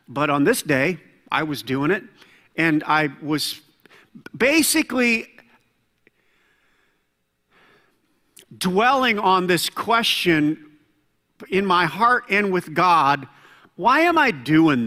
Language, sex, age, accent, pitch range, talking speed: English, male, 50-69, American, 145-200 Hz, 105 wpm